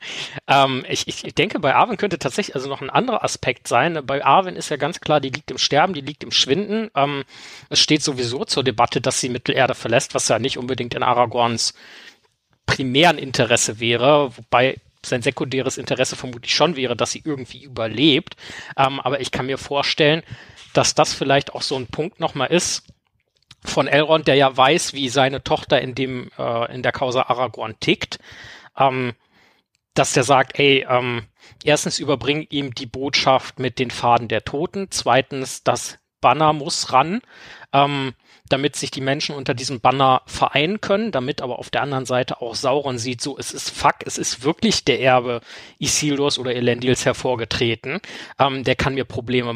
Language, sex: German, male